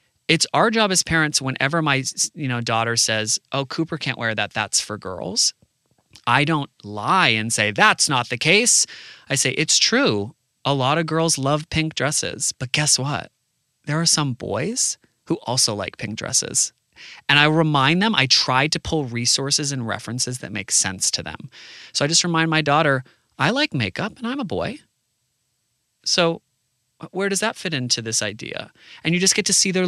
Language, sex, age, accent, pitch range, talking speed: English, male, 30-49, American, 110-160 Hz, 190 wpm